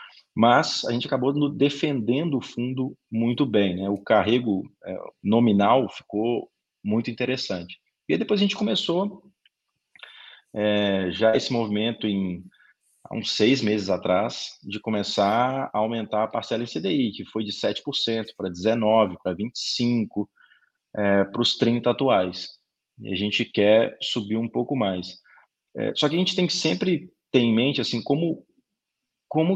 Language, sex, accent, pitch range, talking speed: Portuguese, male, Brazilian, 105-145 Hz, 150 wpm